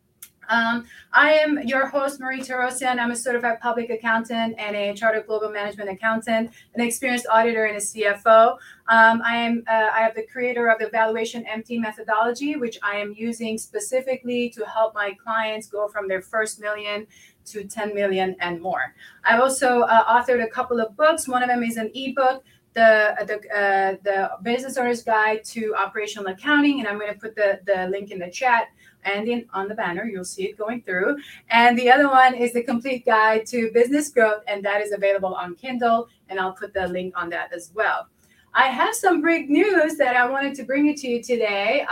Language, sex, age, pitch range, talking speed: English, female, 30-49, 210-245 Hz, 200 wpm